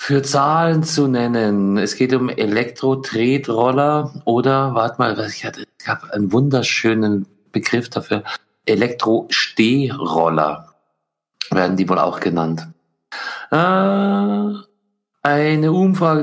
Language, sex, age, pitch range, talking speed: German, male, 50-69, 100-140 Hz, 90 wpm